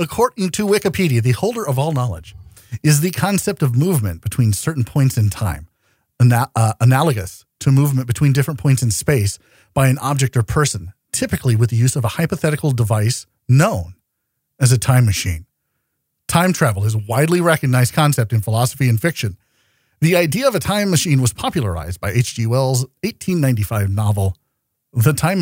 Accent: American